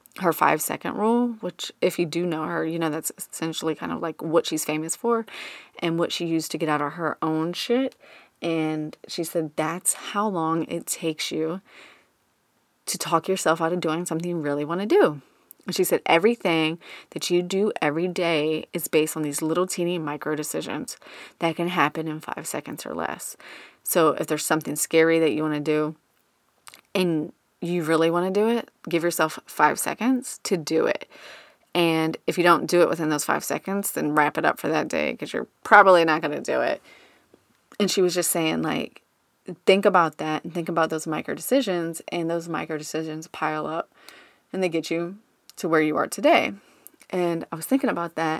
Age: 30-49